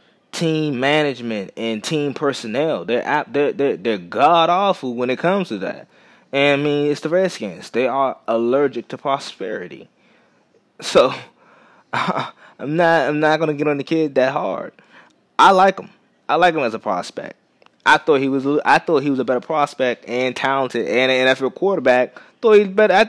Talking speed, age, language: 180 wpm, 20-39, English